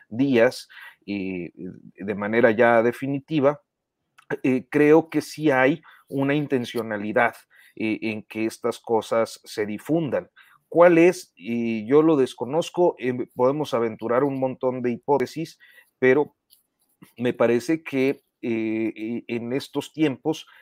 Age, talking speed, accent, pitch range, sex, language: 40-59, 110 wpm, Mexican, 110-140 Hz, male, Spanish